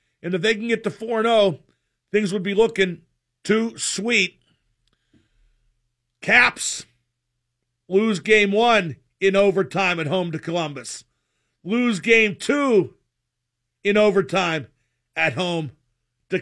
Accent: American